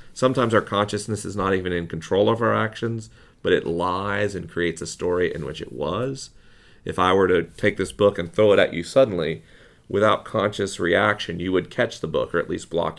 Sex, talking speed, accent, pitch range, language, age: male, 215 wpm, American, 90-110 Hz, English, 40-59